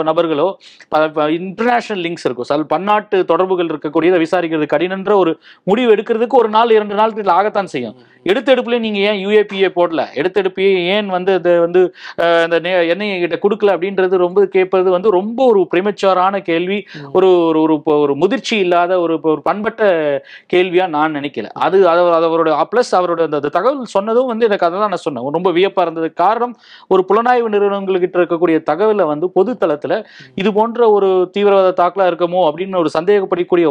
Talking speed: 125 wpm